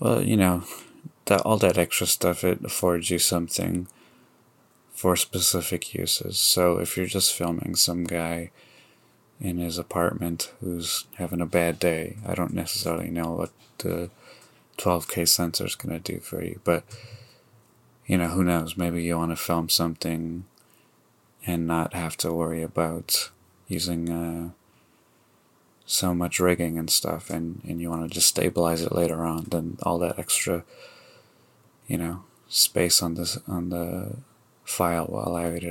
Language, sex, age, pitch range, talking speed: English, male, 30-49, 85-90 Hz, 155 wpm